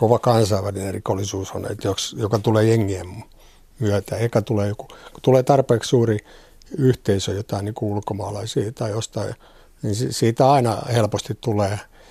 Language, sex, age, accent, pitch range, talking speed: Finnish, male, 60-79, native, 105-125 Hz, 135 wpm